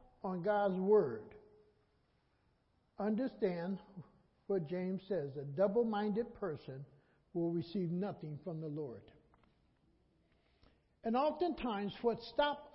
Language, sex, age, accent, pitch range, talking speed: English, male, 60-79, American, 185-240 Hz, 100 wpm